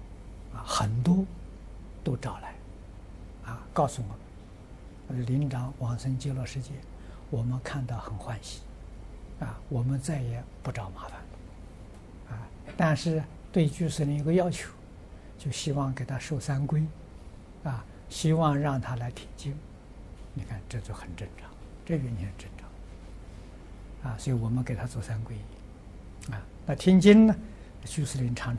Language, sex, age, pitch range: Chinese, male, 60-79, 95-135 Hz